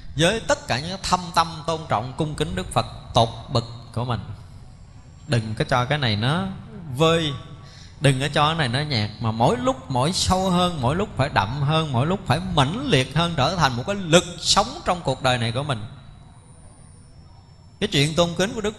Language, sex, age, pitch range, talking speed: Vietnamese, male, 20-39, 125-175 Hz, 210 wpm